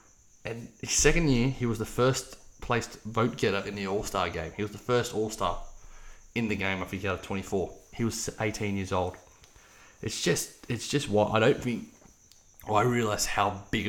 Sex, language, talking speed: male, English, 185 wpm